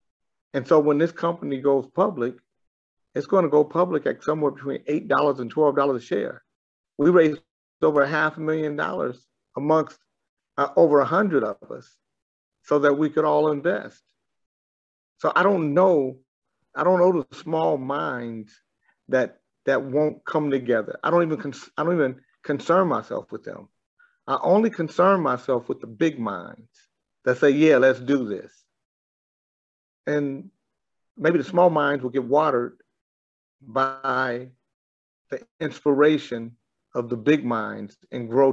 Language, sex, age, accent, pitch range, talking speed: English, male, 50-69, American, 120-155 Hz, 150 wpm